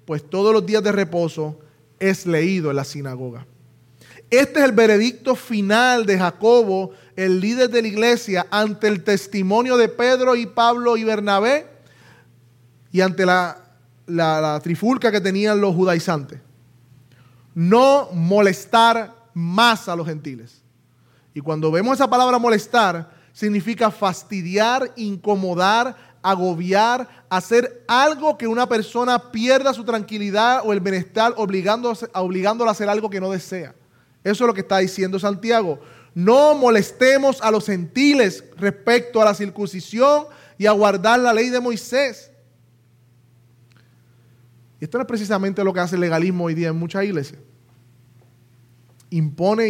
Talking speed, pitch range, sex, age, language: 140 wpm, 150-225 Hz, male, 30-49, Spanish